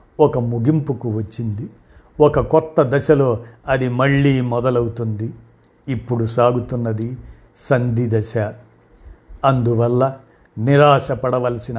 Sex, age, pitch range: male, 50-69, 115-130 Hz